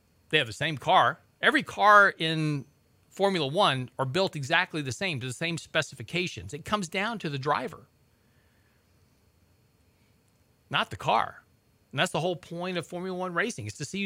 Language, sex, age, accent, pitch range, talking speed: English, male, 40-59, American, 125-185 Hz, 170 wpm